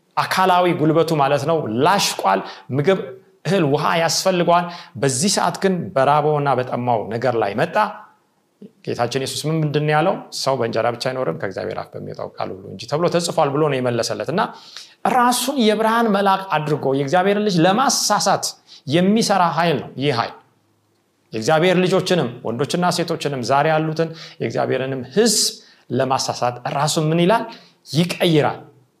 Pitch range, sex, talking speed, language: 135-185 Hz, male, 90 wpm, Amharic